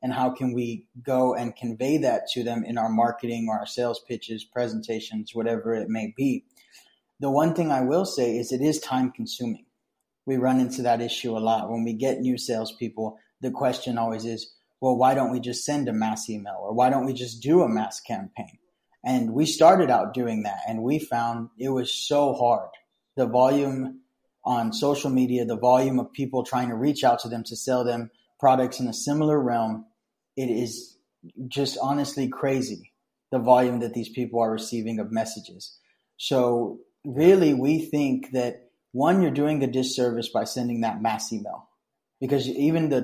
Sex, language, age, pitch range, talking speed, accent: male, English, 20-39, 115-135 Hz, 190 wpm, American